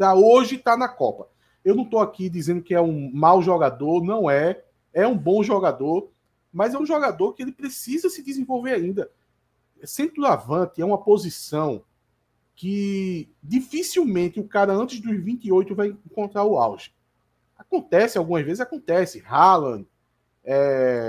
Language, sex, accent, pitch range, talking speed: Portuguese, male, Brazilian, 170-255 Hz, 150 wpm